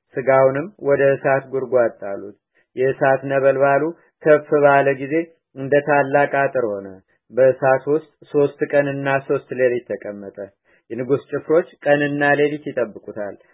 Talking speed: 110 wpm